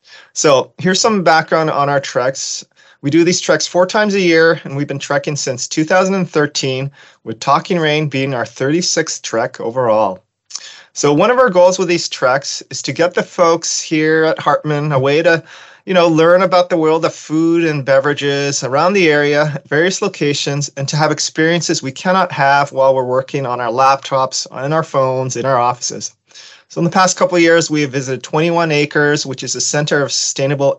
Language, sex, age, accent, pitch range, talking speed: English, male, 30-49, American, 135-170 Hz, 195 wpm